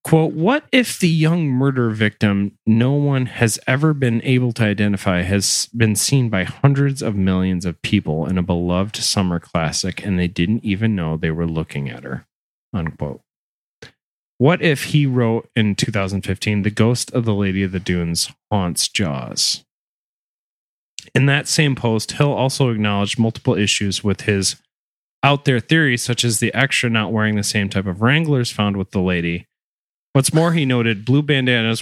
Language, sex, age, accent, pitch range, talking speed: English, male, 30-49, American, 95-130 Hz, 170 wpm